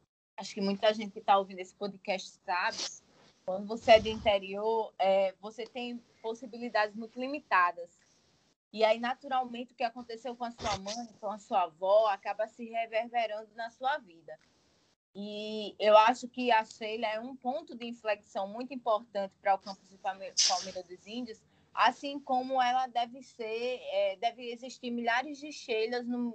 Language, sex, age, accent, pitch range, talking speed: Portuguese, female, 20-39, Brazilian, 200-240 Hz, 165 wpm